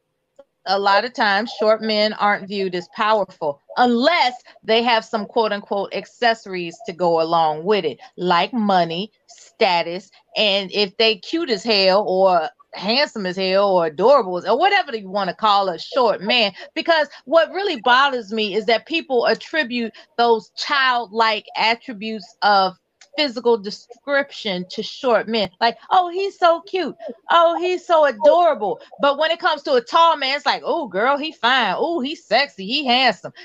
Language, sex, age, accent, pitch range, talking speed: English, female, 30-49, American, 200-275 Hz, 165 wpm